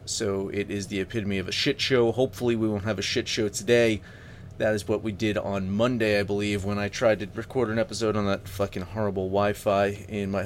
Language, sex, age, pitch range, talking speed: English, male, 30-49, 100-120 Hz, 235 wpm